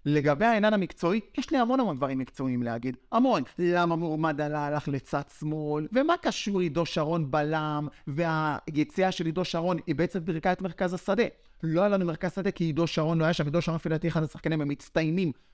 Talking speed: 190 wpm